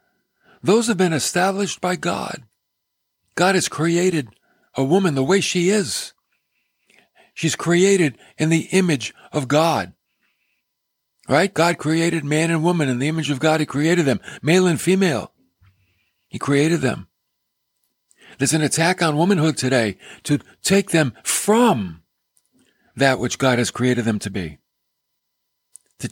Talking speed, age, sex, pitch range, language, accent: 140 wpm, 50-69, male, 125-170 Hz, English, American